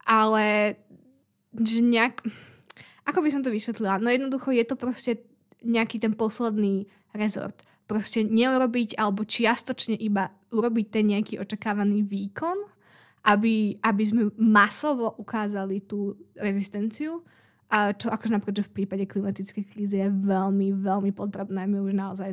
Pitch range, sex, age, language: 200-225 Hz, female, 20-39, Slovak